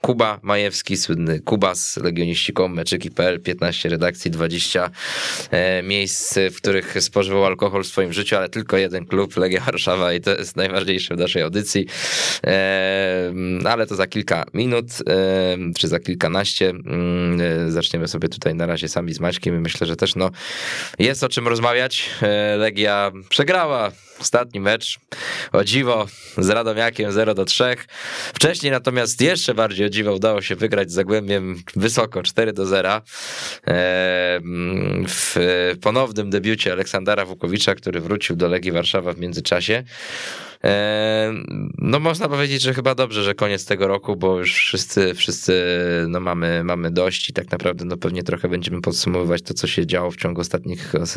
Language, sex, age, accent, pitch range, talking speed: Polish, male, 20-39, native, 85-105 Hz, 145 wpm